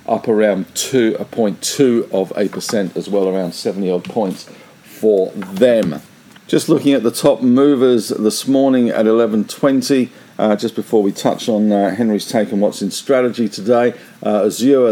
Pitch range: 100-125 Hz